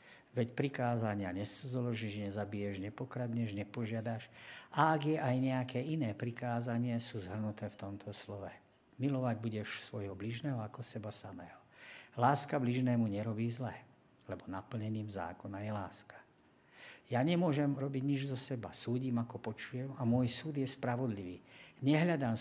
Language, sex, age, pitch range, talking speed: Slovak, male, 50-69, 105-130 Hz, 130 wpm